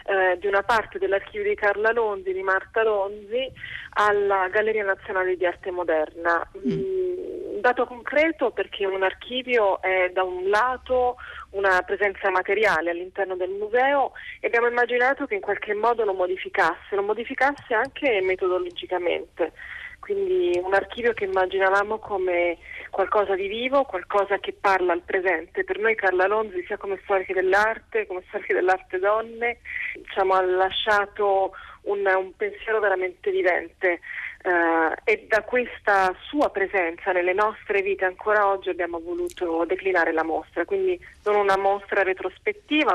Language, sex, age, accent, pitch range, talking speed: Italian, female, 30-49, native, 185-245 Hz, 145 wpm